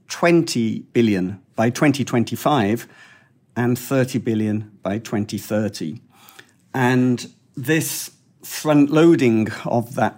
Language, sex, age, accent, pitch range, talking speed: English, male, 50-69, British, 110-125 Hz, 85 wpm